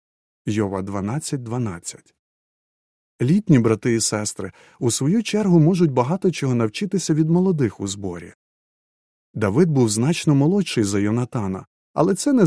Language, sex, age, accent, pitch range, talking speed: Ukrainian, male, 30-49, native, 115-165 Hz, 130 wpm